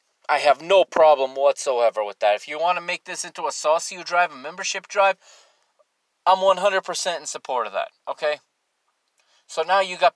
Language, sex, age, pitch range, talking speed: English, male, 30-49, 155-210 Hz, 195 wpm